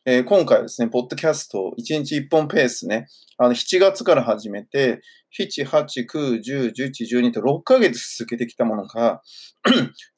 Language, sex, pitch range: Japanese, male, 120-150 Hz